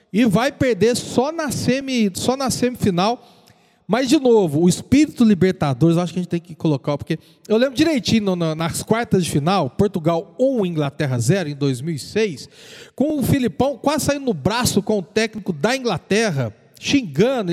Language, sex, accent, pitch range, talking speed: Portuguese, male, Brazilian, 170-260 Hz, 175 wpm